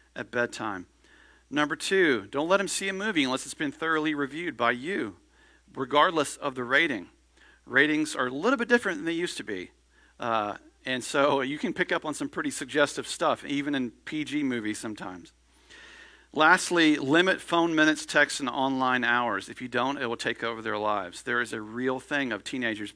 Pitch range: 110-170 Hz